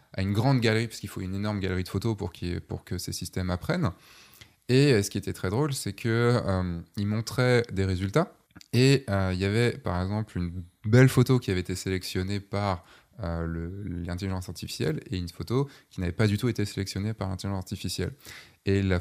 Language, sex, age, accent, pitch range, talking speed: French, male, 20-39, French, 95-115 Hz, 205 wpm